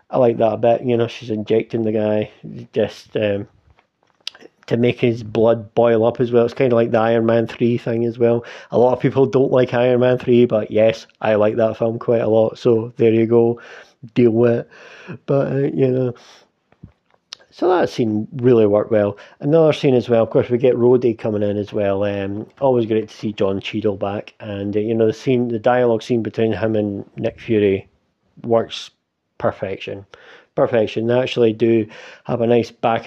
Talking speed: 205 wpm